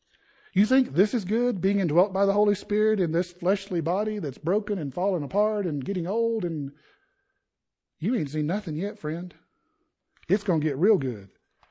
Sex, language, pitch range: male, English, 150-200 Hz